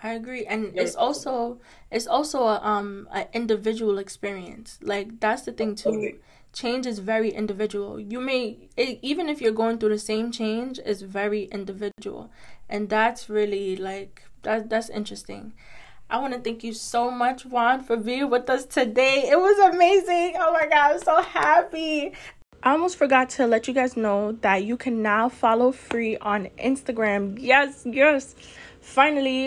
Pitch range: 215-255 Hz